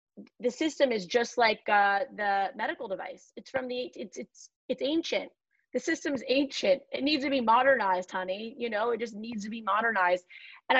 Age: 20-39